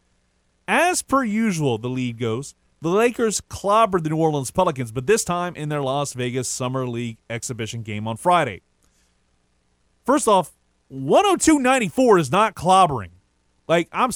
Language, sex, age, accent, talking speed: English, male, 30-49, American, 145 wpm